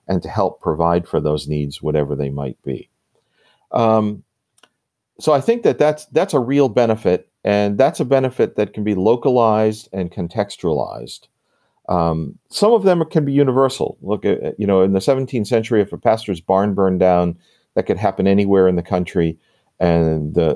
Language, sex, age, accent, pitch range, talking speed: English, male, 50-69, American, 85-120 Hz, 180 wpm